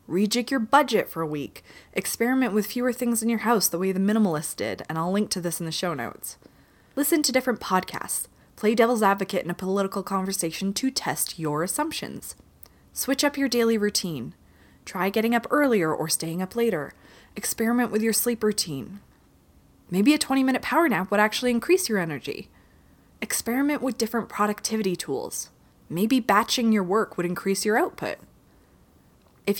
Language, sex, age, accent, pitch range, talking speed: English, female, 20-39, American, 175-230 Hz, 170 wpm